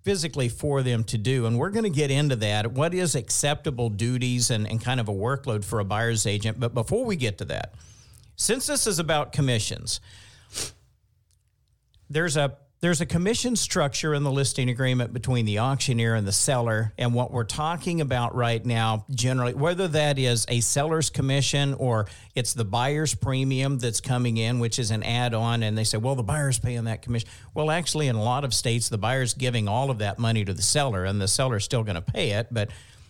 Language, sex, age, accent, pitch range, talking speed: English, male, 50-69, American, 110-145 Hz, 210 wpm